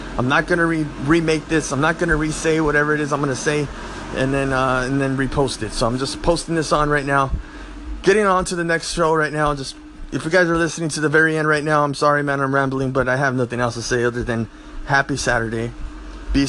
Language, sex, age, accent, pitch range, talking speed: English, male, 20-39, American, 135-170 Hz, 250 wpm